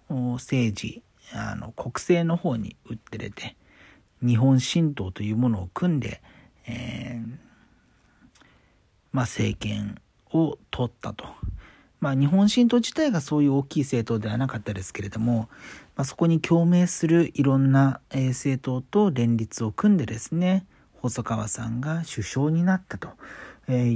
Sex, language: male, Japanese